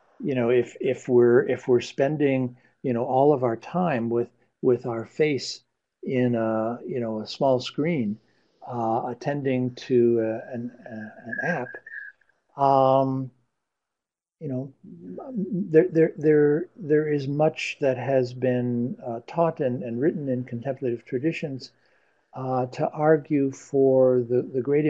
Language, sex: English, male